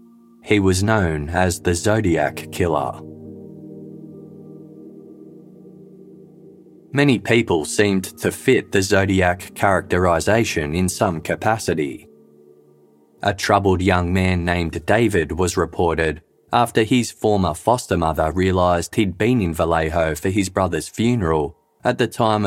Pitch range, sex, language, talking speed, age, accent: 85-110 Hz, male, English, 115 wpm, 20-39, Australian